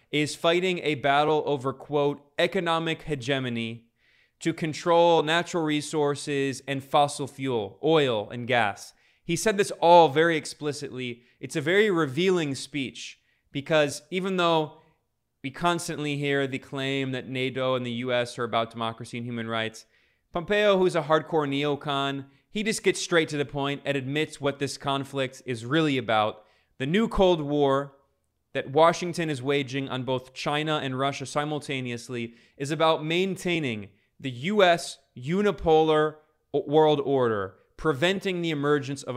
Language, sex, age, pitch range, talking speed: English, male, 20-39, 125-160 Hz, 145 wpm